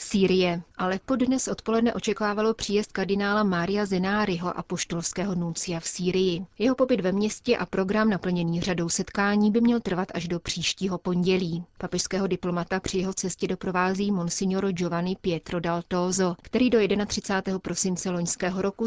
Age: 30-49